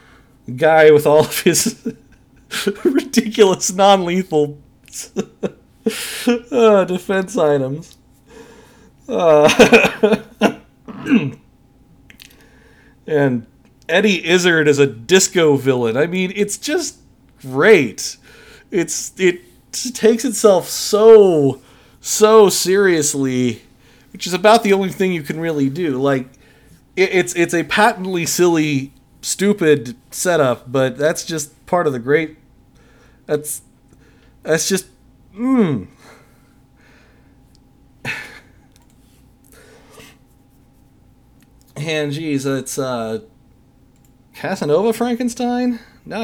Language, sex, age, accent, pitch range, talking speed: English, male, 40-59, American, 130-185 Hz, 85 wpm